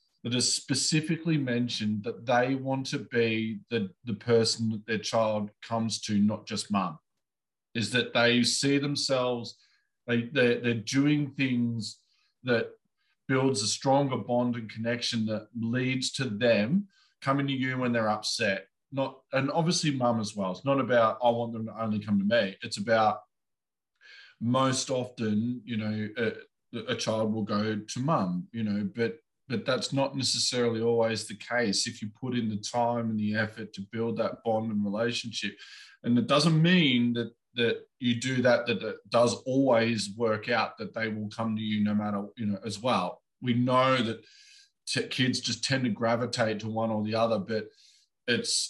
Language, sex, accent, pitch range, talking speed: English, male, Australian, 110-130 Hz, 180 wpm